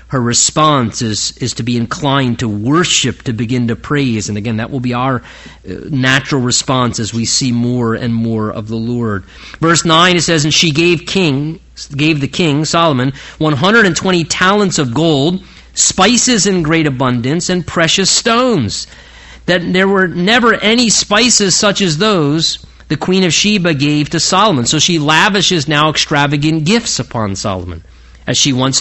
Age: 40-59